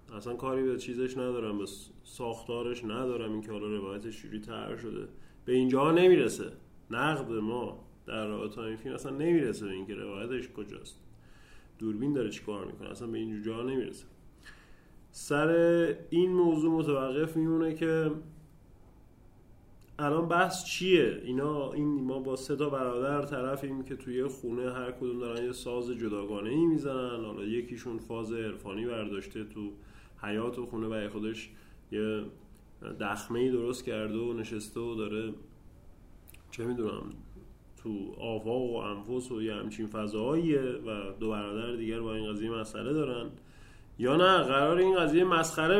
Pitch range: 110-155 Hz